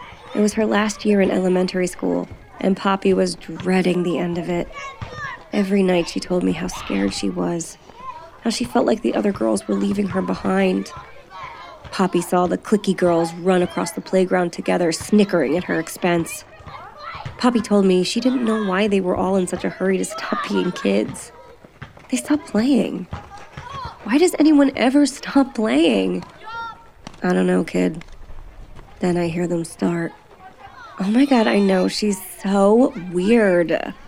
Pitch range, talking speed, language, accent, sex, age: 175-225 Hz, 165 wpm, English, American, female, 20-39